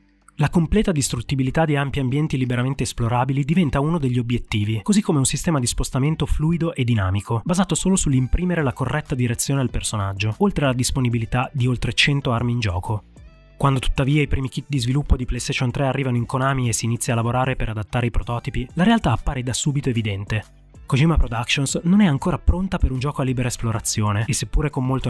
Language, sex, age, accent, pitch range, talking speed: Italian, male, 20-39, native, 120-150 Hz, 195 wpm